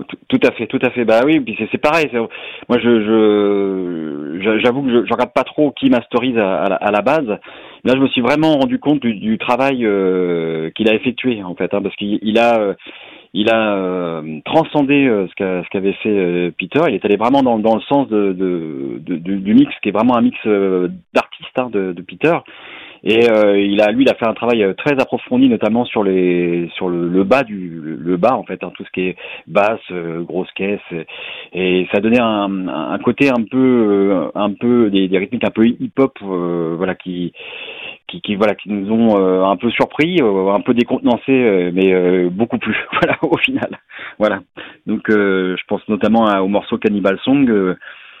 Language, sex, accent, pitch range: French, male, French, 95-125 Hz